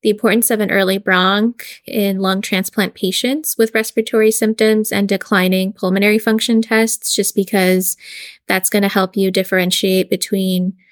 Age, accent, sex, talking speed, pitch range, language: 10-29, American, female, 150 wpm, 190-220 Hz, English